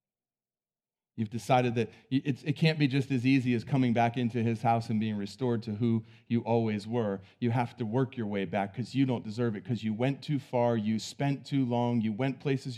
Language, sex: English, male